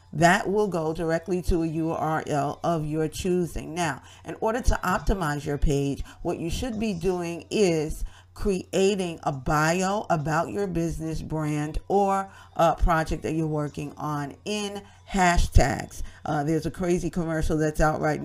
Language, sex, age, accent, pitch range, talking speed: English, female, 40-59, American, 150-185 Hz, 155 wpm